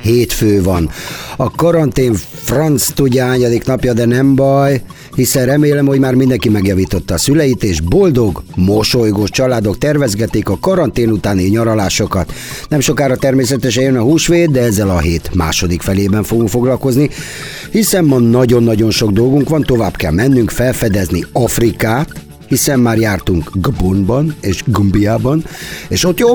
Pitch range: 105-140 Hz